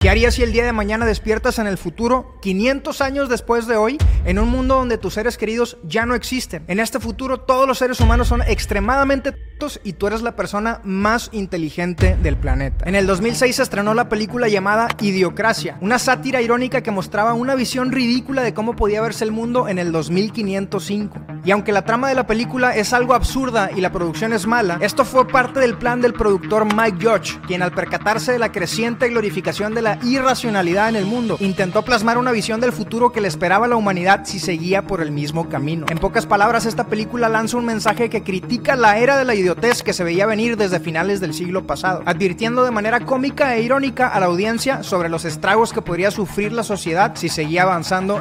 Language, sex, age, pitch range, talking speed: Italian, male, 30-49, 190-240 Hz, 210 wpm